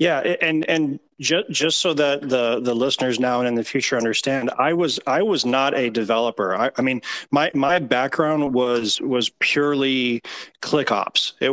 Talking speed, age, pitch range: 180 wpm, 30-49, 120-150 Hz